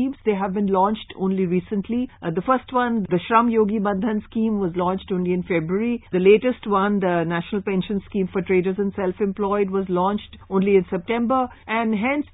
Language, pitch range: English, 185-230 Hz